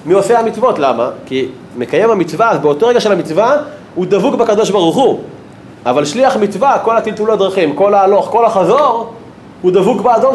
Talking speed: 170 wpm